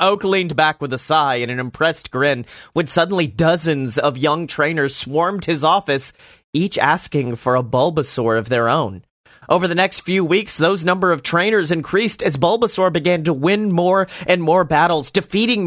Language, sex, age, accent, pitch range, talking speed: English, male, 30-49, American, 140-170 Hz, 180 wpm